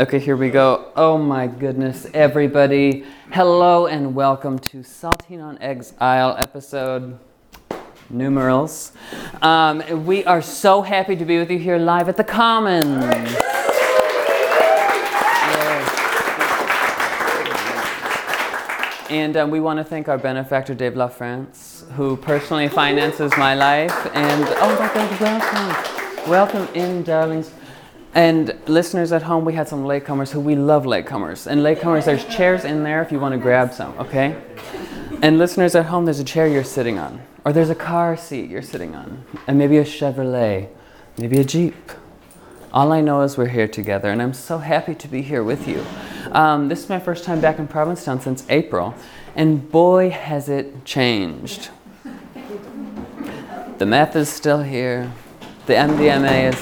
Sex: male